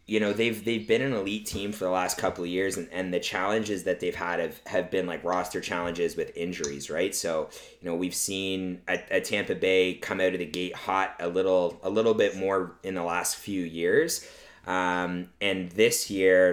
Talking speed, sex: 220 wpm, male